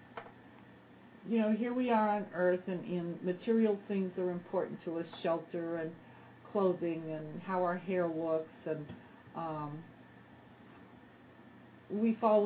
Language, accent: English, American